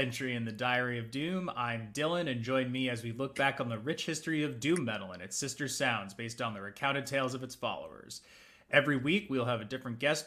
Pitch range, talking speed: 120-145 Hz, 240 wpm